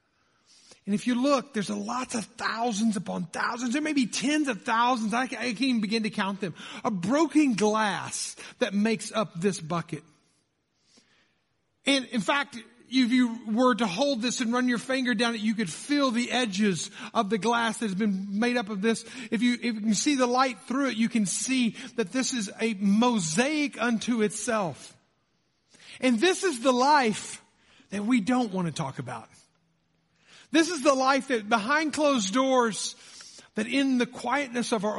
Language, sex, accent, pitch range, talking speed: English, male, American, 215-265 Hz, 180 wpm